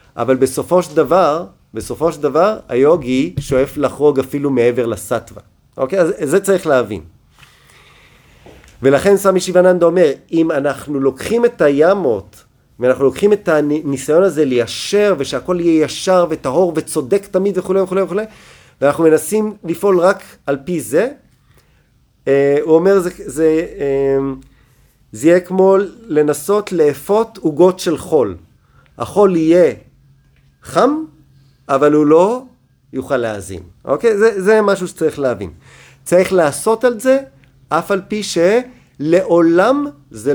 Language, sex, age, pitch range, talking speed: Hebrew, male, 40-59, 130-180 Hz, 130 wpm